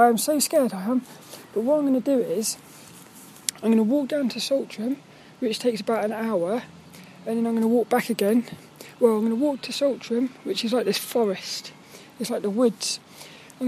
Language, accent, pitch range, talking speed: English, British, 230-260 Hz, 215 wpm